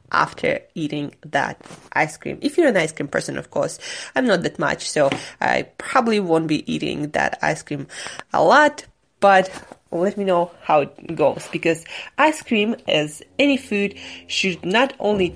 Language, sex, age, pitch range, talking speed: English, female, 20-39, 180-250 Hz, 170 wpm